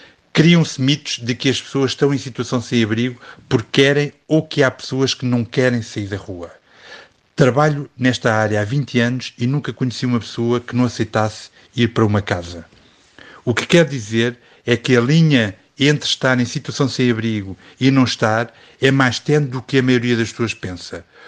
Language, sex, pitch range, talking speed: Portuguese, male, 115-135 Hz, 190 wpm